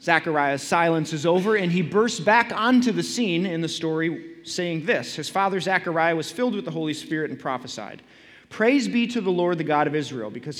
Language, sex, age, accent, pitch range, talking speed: English, male, 30-49, American, 135-175 Hz, 210 wpm